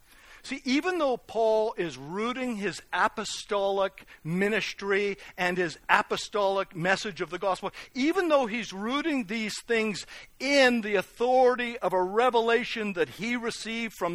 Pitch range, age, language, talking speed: 180-235 Hz, 60-79, English, 135 wpm